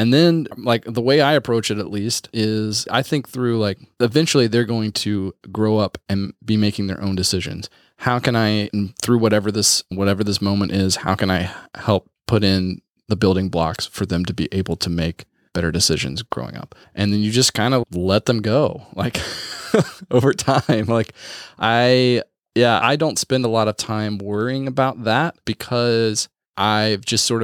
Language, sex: English, male